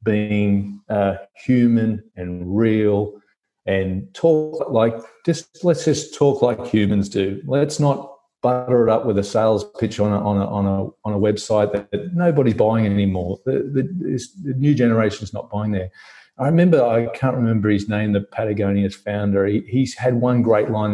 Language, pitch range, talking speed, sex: English, 105-125 Hz, 180 wpm, male